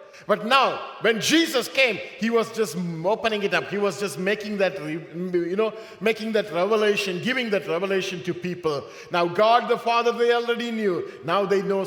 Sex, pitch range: male, 180-290 Hz